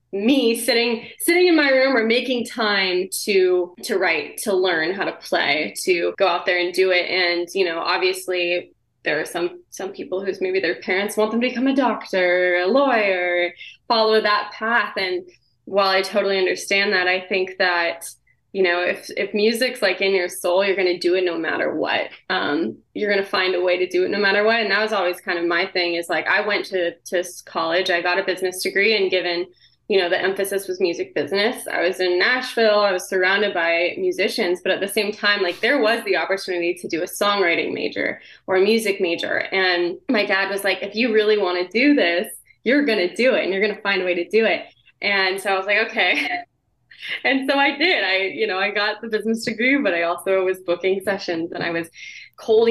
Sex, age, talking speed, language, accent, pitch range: female, 20-39, 225 wpm, English, American, 180-220 Hz